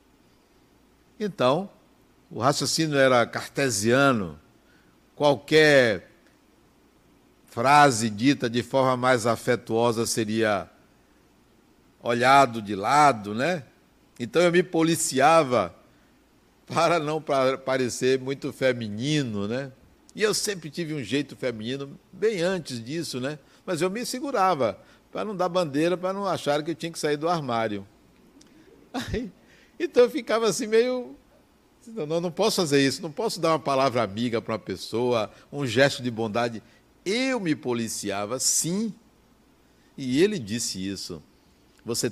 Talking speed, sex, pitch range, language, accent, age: 130 wpm, male, 115-165 Hz, Portuguese, Brazilian, 60-79